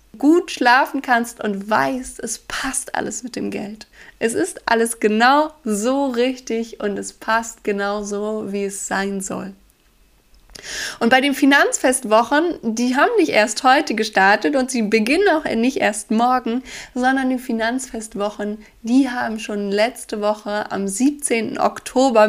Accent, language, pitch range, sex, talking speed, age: German, German, 215-265 Hz, female, 145 wpm, 20-39